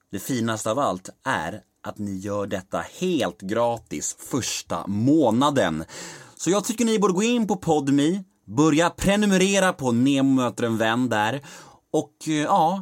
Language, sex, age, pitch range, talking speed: Swedish, male, 30-49, 100-155 Hz, 150 wpm